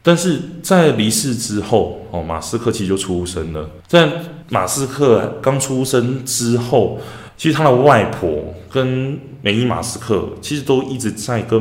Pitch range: 90-115 Hz